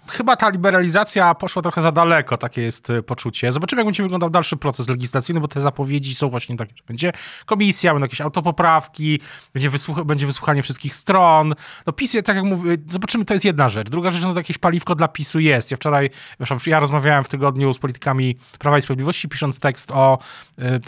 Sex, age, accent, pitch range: male, 20-39, native, 135-170 Hz